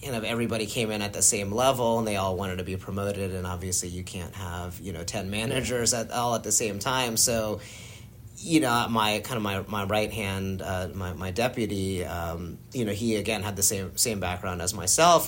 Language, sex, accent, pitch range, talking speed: English, male, American, 95-115 Hz, 225 wpm